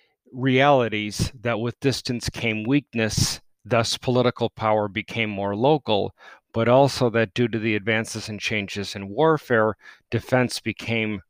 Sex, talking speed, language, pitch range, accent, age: male, 135 wpm, English, 110-135 Hz, American, 40-59